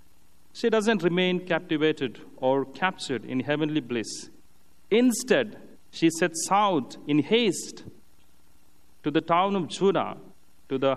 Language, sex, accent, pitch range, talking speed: English, male, Indian, 125-180 Hz, 120 wpm